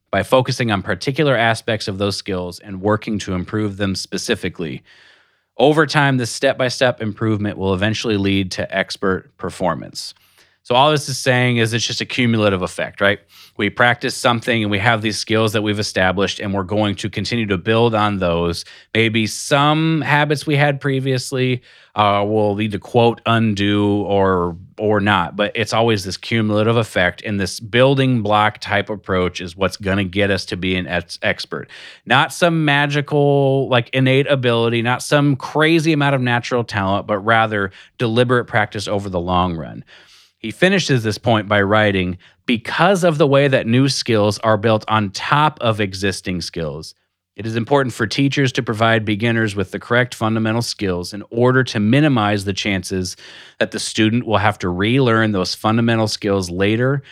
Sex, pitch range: male, 100-125 Hz